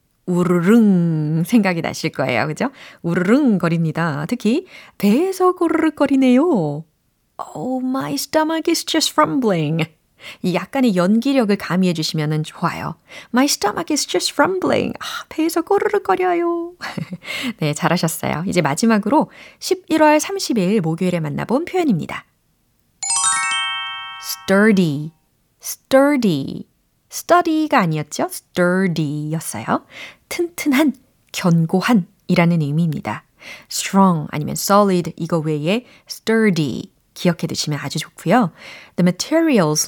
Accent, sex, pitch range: native, female, 165-270 Hz